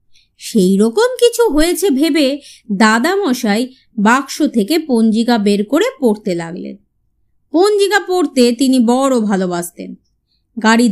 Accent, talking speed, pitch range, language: native, 105 wpm, 225-330 Hz, Bengali